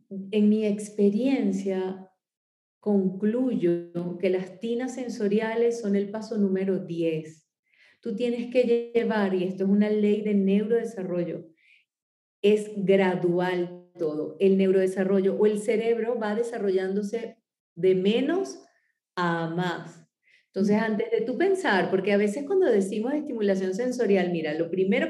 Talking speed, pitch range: 130 wpm, 185-230 Hz